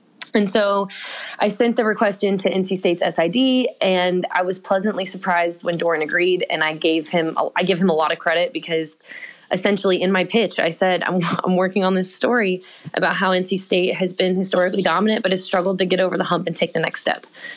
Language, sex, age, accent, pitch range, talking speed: English, female, 20-39, American, 170-200 Hz, 215 wpm